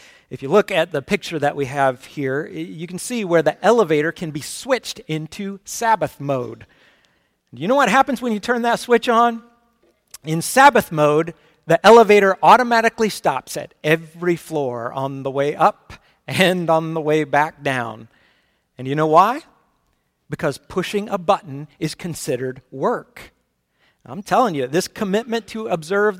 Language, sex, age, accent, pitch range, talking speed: English, male, 50-69, American, 145-215 Hz, 165 wpm